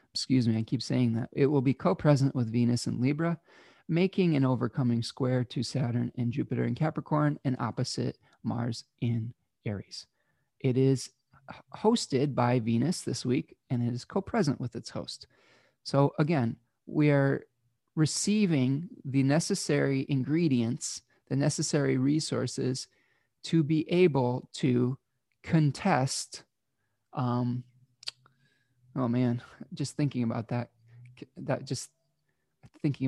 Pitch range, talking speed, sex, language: 120-150 Hz, 125 wpm, male, English